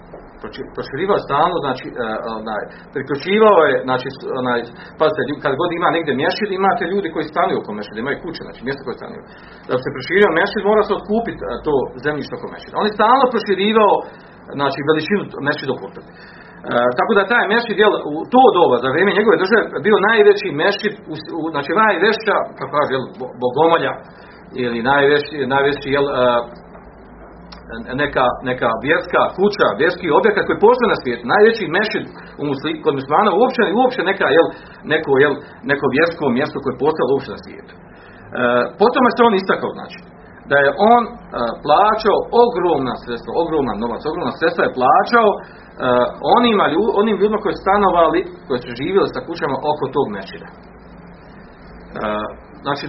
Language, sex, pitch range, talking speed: Croatian, male, 140-220 Hz, 155 wpm